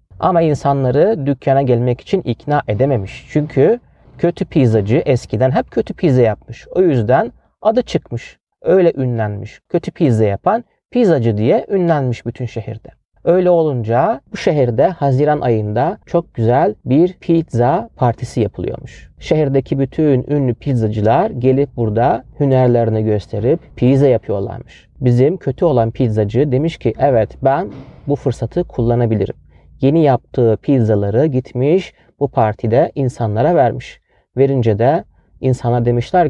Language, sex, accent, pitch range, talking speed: Turkish, male, native, 115-145 Hz, 120 wpm